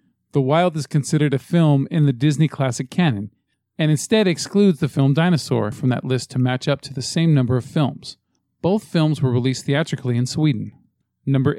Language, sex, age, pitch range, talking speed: English, male, 40-59, 125-155 Hz, 190 wpm